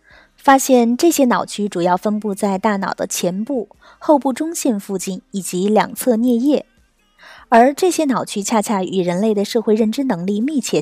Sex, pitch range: female, 195-255 Hz